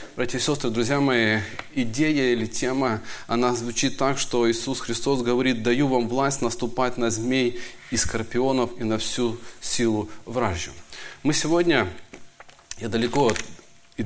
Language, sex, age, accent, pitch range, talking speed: Russian, male, 30-49, native, 120-185 Hz, 140 wpm